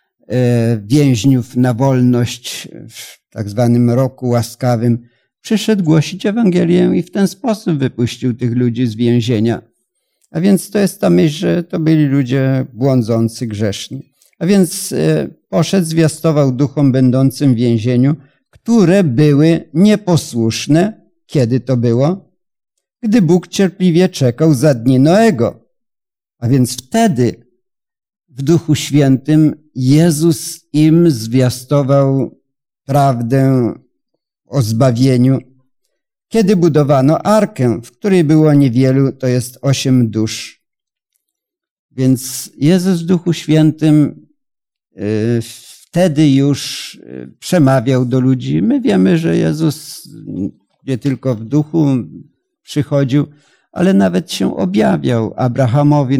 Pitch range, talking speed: 125-170 Hz, 105 wpm